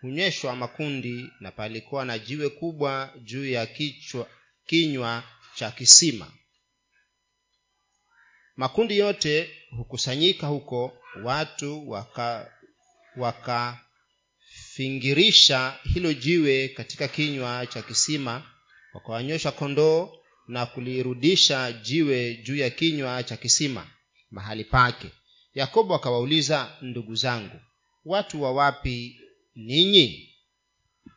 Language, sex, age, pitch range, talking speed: Swahili, male, 30-49, 125-160 Hz, 90 wpm